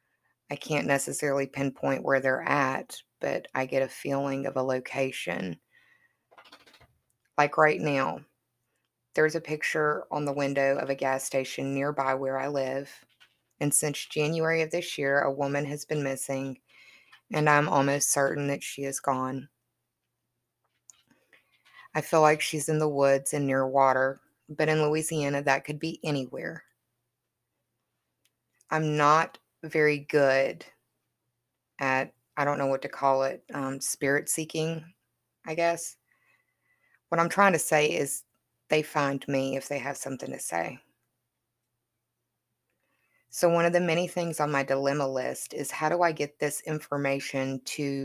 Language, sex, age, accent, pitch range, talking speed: English, female, 20-39, American, 135-150 Hz, 145 wpm